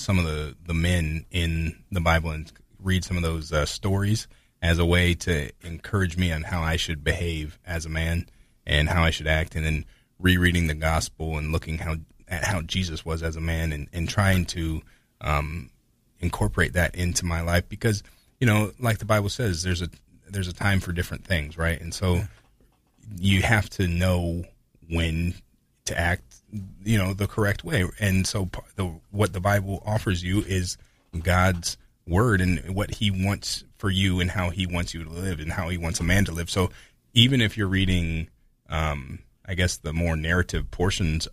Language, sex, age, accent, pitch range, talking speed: English, male, 30-49, American, 80-100 Hz, 195 wpm